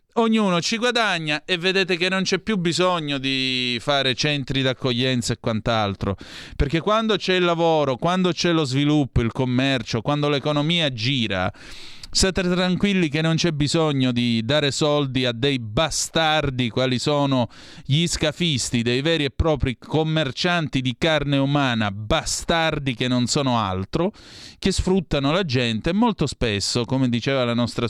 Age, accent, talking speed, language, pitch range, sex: 30-49, native, 150 wpm, Italian, 110-150 Hz, male